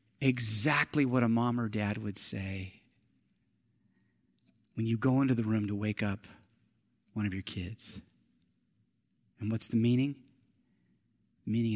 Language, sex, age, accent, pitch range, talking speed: English, male, 30-49, American, 110-150 Hz, 140 wpm